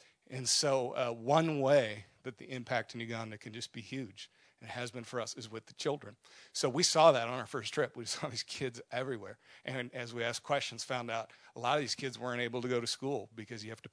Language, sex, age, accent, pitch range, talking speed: English, male, 40-59, American, 115-135 Hz, 255 wpm